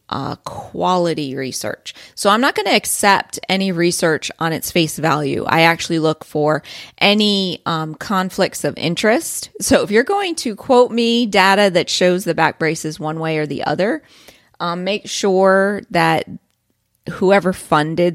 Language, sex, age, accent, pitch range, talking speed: English, female, 30-49, American, 165-215 Hz, 160 wpm